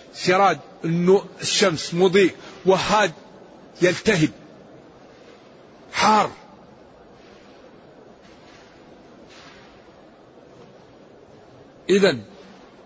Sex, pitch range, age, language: male, 165-200 Hz, 60-79, Arabic